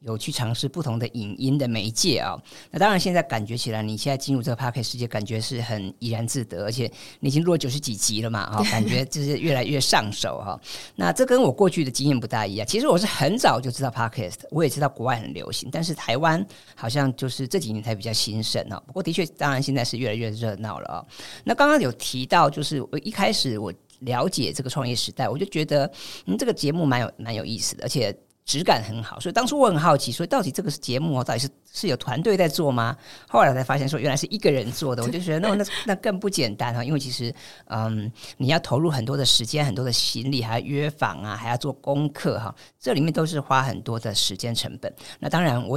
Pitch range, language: 115-150 Hz, Chinese